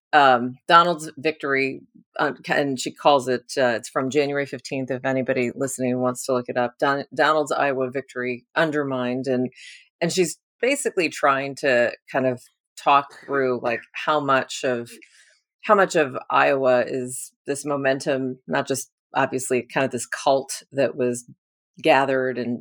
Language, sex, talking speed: English, female, 155 wpm